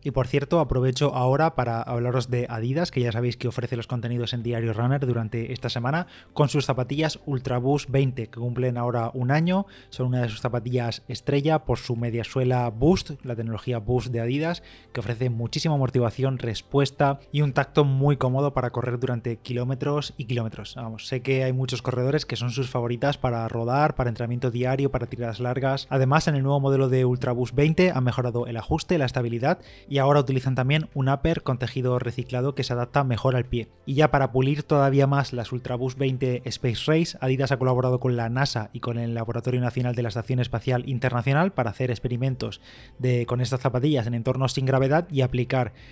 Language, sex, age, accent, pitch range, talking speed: Spanish, male, 20-39, Spanish, 120-135 Hz, 205 wpm